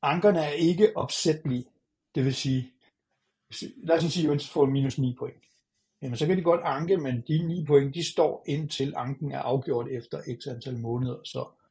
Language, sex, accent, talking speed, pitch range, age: Danish, male, native, 195 wpm, 130-170 Hz, 60-79